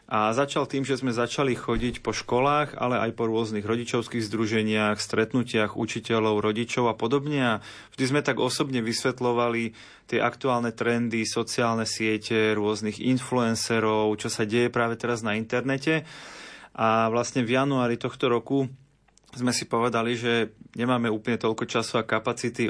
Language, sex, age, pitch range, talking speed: Slovak, male, 30-49, 115-125 Hz, 150 wpm